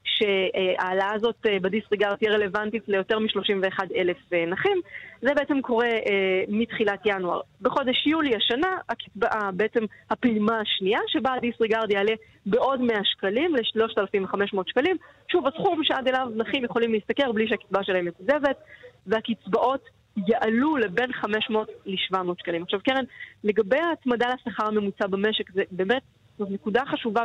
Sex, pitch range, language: female, 200-250 Hz, Hebrew